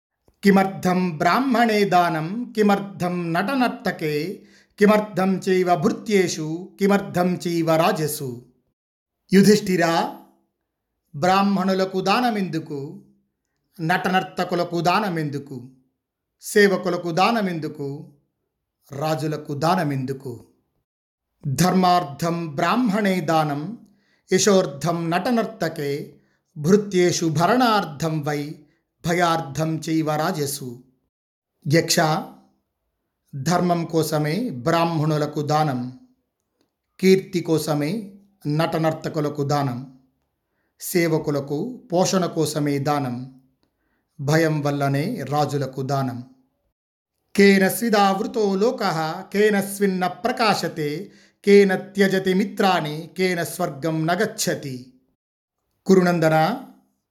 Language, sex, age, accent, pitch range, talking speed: Telugu, male, 50-69, native, 145-190 Hz, 55 wpm